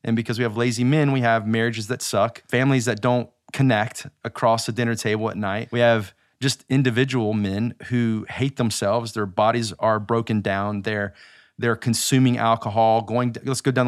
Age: 30-49